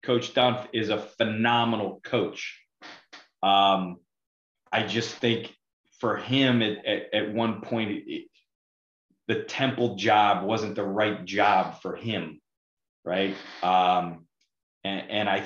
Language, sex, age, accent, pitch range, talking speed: English, male, 30-49, American, 100-125 Hz, 125 wpm